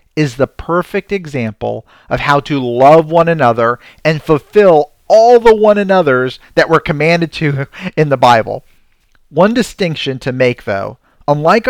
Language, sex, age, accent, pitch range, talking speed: English, male, 40-59, American, 120-175 Hz, 150 wpm